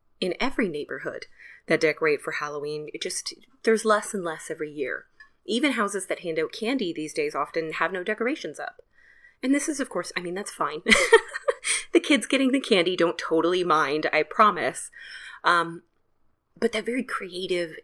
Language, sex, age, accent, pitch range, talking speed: English, female, 20-39, American, 165-275 Hz, 175 wpm